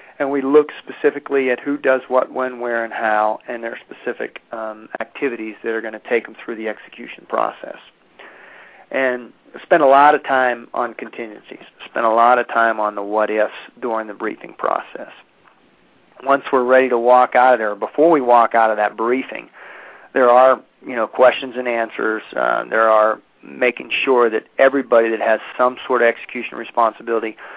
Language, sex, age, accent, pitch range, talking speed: English, male, 40-59, American, 110-125 Hz, 175 wpm